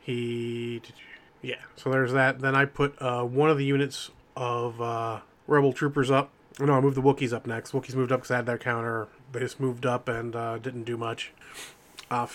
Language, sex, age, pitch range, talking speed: English, male, 30-49, 120-135 Hz, 215 wpm